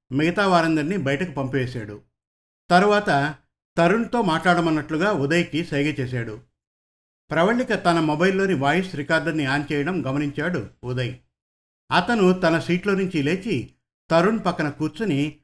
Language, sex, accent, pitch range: Telugu, male, native, 140-180 Hz